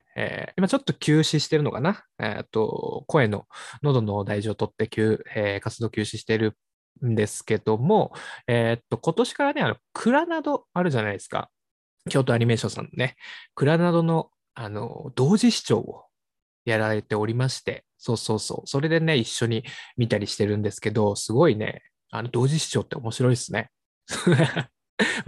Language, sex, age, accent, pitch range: Japanese, male, 20-39, native, 105-140 Hz